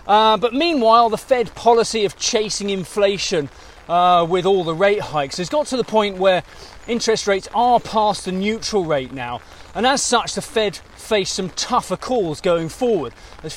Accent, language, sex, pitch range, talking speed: British, English, male, 175-225 Hz, 180 wpm